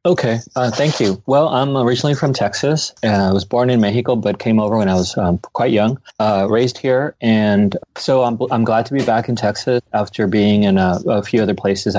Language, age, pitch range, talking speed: English, 30-49, 95-120 Hz, 220 wpm